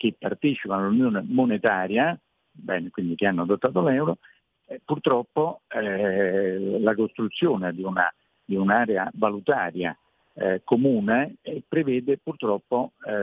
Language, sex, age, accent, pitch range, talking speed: Italian, male, 50-69, native, 100-135 Hz, 85 wpm